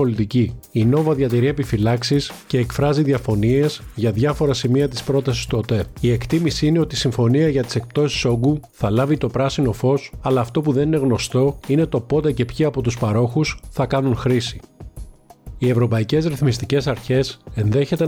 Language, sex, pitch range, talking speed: Greek, male, 120-140 Hz, 170 wpm